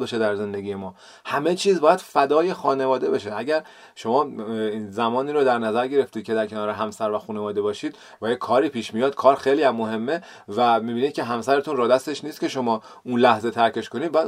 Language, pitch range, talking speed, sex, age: Persian, 115-165 Hz, 190 wpm, male, 30-49